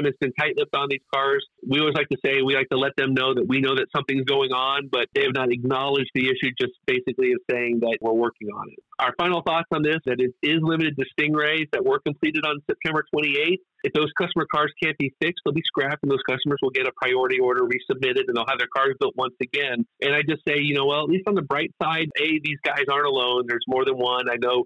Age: 40-59